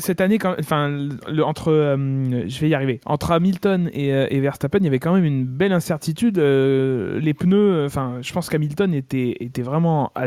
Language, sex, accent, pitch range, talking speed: French, male, French, 135-180 Hz, 210 wpm